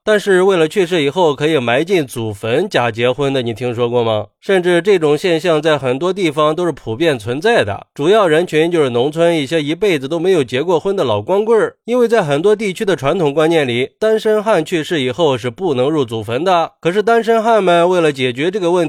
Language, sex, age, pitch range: Chinese, male, 20-39, 140-195 Hz